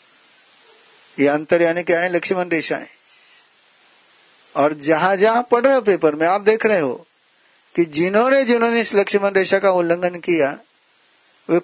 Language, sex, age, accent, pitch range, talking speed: Hindi, male, 60-79, native, 140-185 Hz, 150 wpm